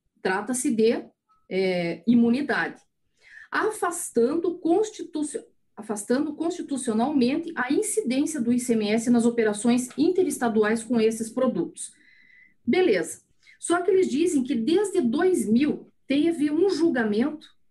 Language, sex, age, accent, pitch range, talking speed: Portuguese, female, 40-59, Brazilian, 225-315 Hz, 90 wpm